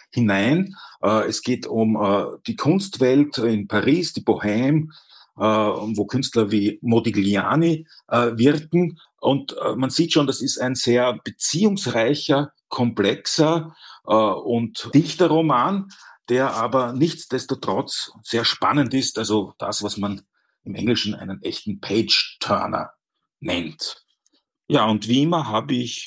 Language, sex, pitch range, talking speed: German, male, 105-140 Hz, 115 wpm